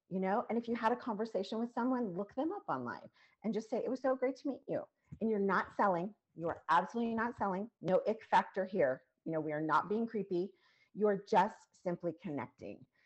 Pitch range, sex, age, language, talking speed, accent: 150-210 Hz, female, 40-59, English, 220 wpm, American